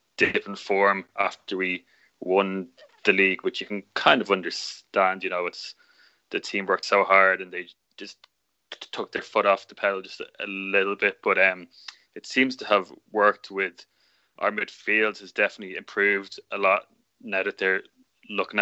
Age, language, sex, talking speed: 20-39, English, male, 175 wpm